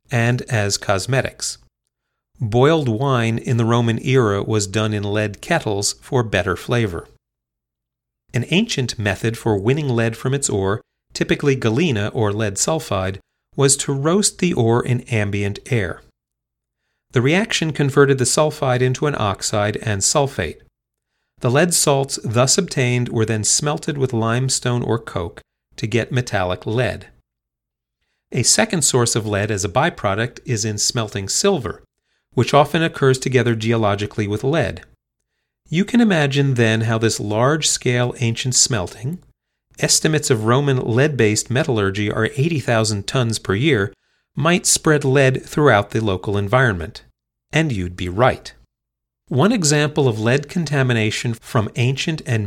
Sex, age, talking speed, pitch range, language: male, 40-59, 140 wpm, 105-140 Hz, English